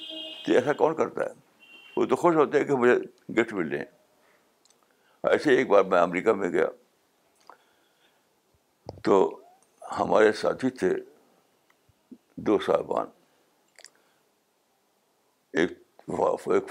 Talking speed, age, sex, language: 95 wpm, 60-79, male, Urdu